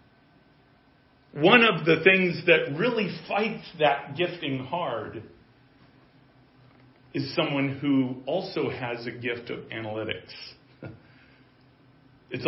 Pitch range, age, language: 130-155 Hz, 40-59, English